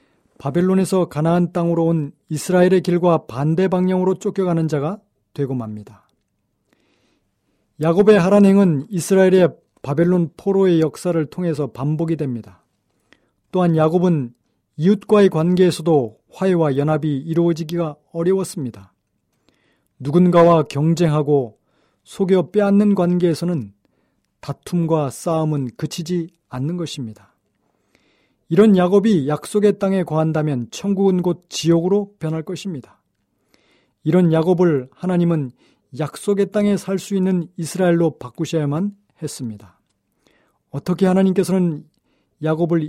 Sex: male